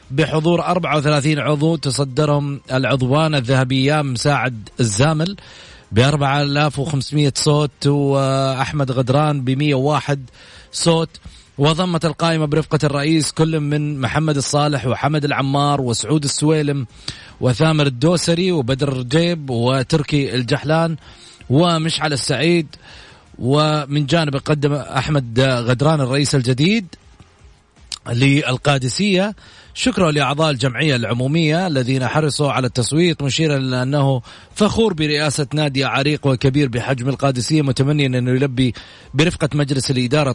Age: 30-49